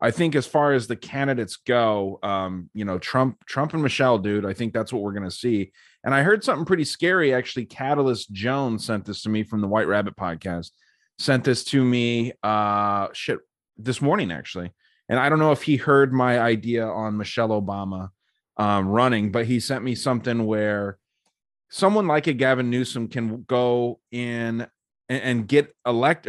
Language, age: English, 30-49